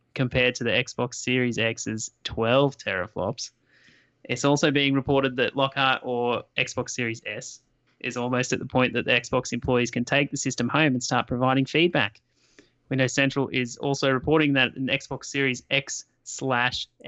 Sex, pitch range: male, 120-140 Hz